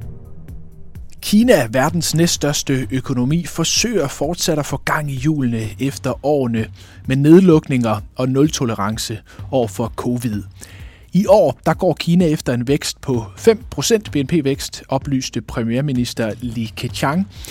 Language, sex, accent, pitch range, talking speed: Danish, male, native, 110-155 Hz, 120 wpm